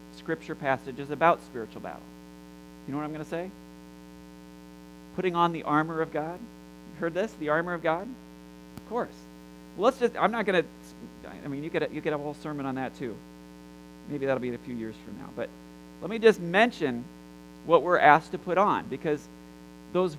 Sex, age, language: male, 40-59, English